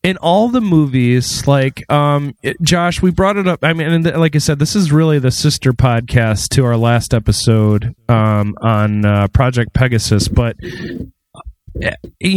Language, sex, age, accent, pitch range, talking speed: English, male, 30-49, American, 120-160 Hz, 175 wpm